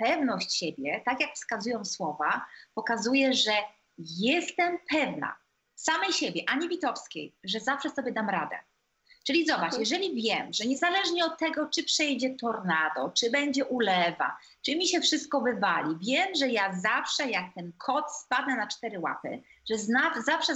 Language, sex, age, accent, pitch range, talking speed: Polish, female, 30-49, native, 220-290 Hz, 150 wpm